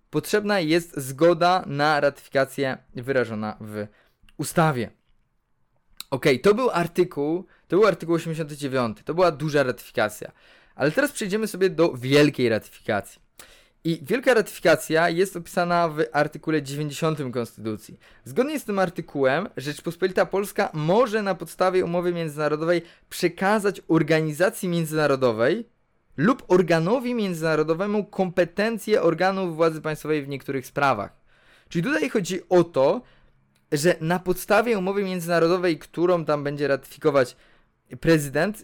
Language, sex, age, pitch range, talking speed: Polish, male, 20-39, 145-185 Hz, 115 wpm